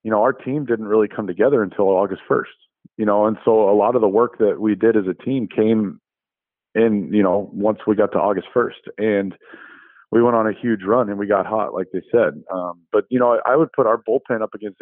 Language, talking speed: English, 245 wpm